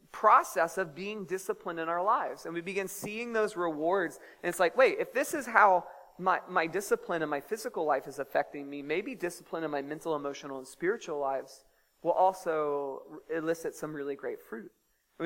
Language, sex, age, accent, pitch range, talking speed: English, male, 30-49, American, 155-225 Hz, 190 wpm